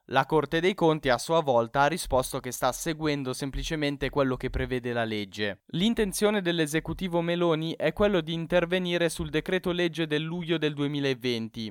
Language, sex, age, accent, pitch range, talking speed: Italian, male, 10-29, native, 135-170 Hz, 165 wpm